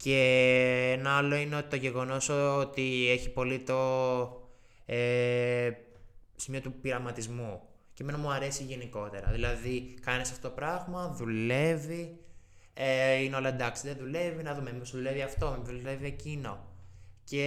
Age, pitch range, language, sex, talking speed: 20-39, 120-140 Hz, Greek, male, 135 wpm